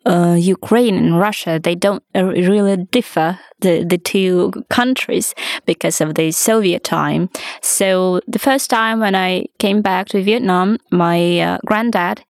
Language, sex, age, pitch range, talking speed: English, female, 20-39, 175-225 Hz, 150 wpm